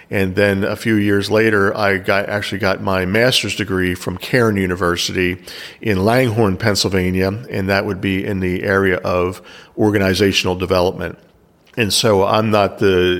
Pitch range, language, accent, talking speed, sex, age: 95-105 Hz, English, American, 150 wpm, male, 40-59